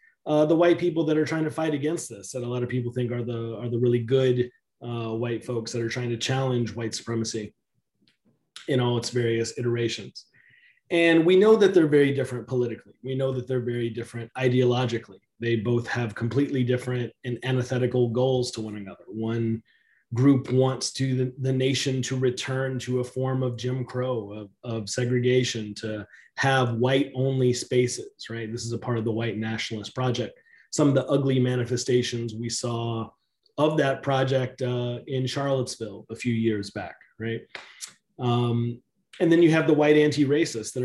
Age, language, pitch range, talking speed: 30-49, English, 115-130 Hz, 180 wpm